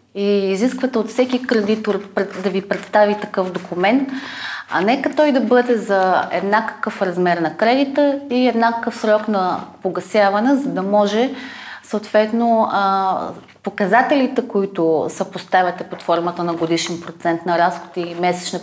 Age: 30-49